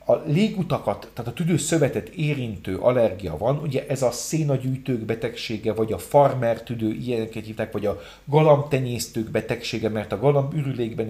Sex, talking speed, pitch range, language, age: male, 140 wpm, 110-150 Hz, Hungarian, 40-59